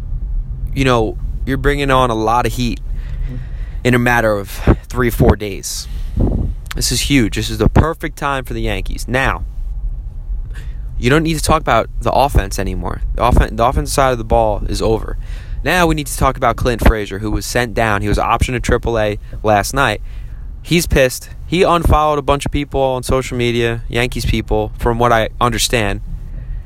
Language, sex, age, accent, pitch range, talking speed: English, male, 20-39, American, 105-140 Hz, 190 wpm